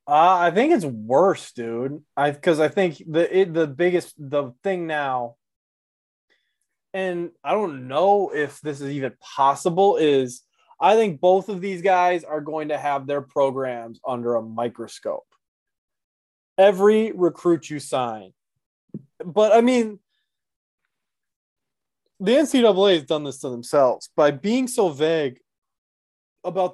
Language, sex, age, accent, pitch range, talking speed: English, male, 20-39, American, 135-180 Hz, 135 wpm